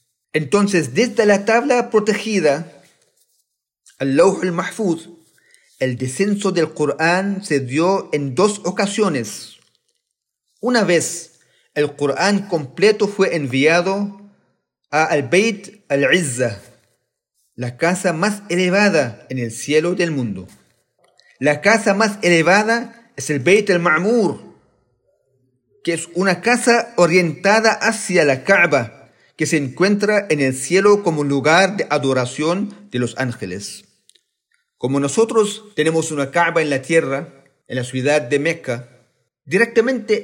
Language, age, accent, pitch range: Spanish, 40-59, Mexican, 140-205 Hz